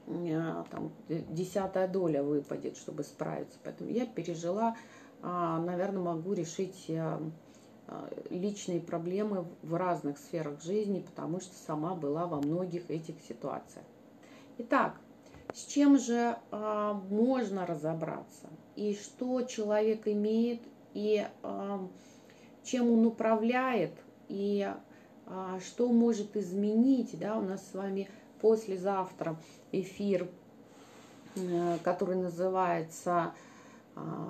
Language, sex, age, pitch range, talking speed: Russian, female, 30-49, 175-220 Hz, 95 wpm